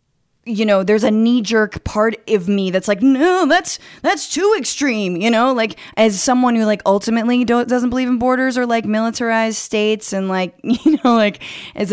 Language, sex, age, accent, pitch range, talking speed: English, female, 20-39, American, 175-220 Hz, 190 wpm